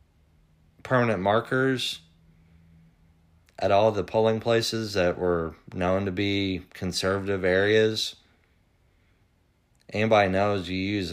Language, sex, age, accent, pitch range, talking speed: English, male, 30-49, American, 85-105 Hz, 95 wpm